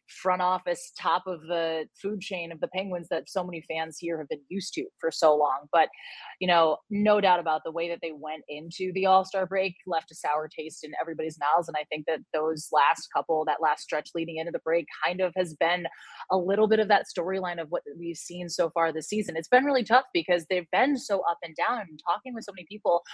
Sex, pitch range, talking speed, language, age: female, 160-190 Hz, 240 wpm, English, 20-39